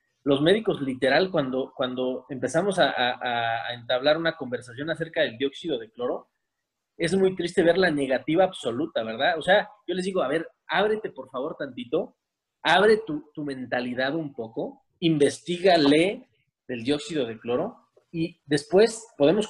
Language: Spanish